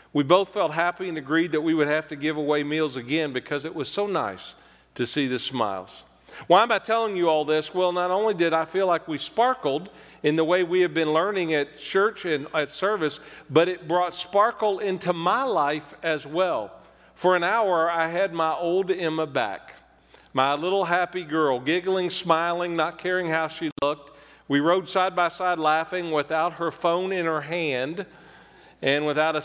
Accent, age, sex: American, 40-59, male